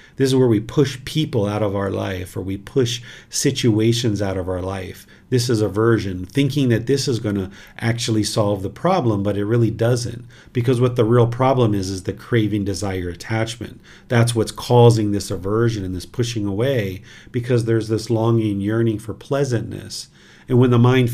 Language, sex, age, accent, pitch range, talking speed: English, male, 40-59, American, 105-130 Hz, 185 wpm